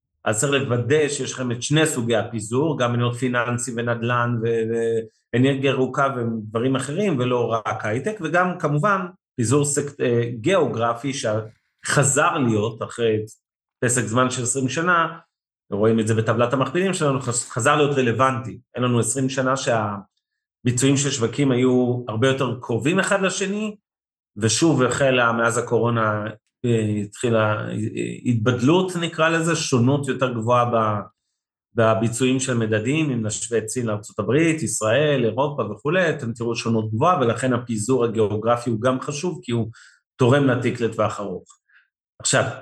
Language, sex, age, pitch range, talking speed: Hebrew, male, 30-49, 110-135 Hz, 130 wpm